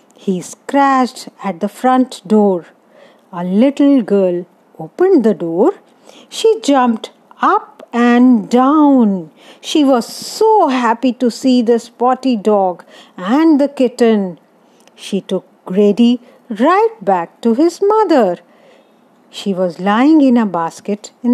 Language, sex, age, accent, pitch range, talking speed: Hindi, female, 50-69, native, 195-275 Hz, 125 wpm